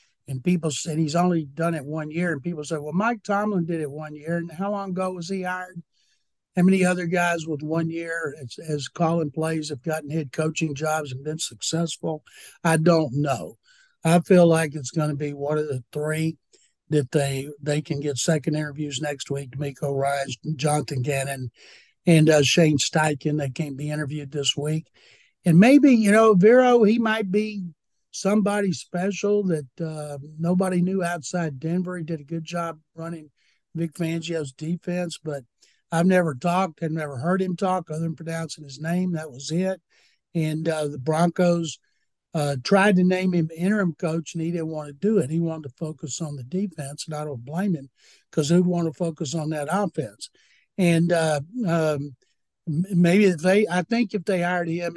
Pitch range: 150-180 Hz